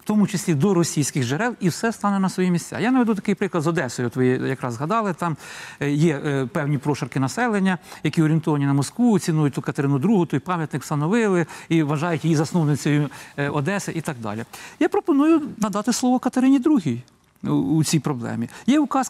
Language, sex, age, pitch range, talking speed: Ukrainian, male, 50-69, 155-225 Hz, 180 wpm